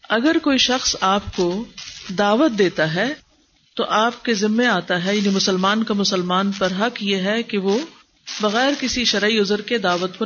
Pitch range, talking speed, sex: 185-240 Hz, 180 wpm, female